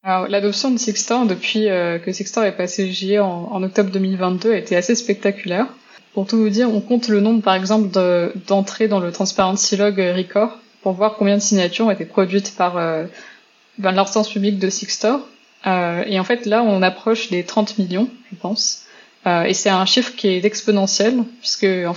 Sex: female